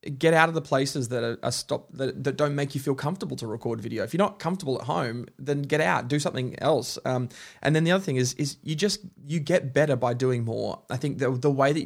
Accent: Australian